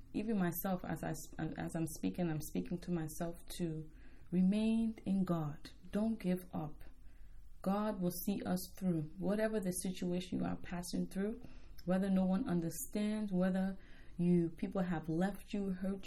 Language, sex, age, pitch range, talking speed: English, female, 20-39, 170-200 Hz, 155 wpm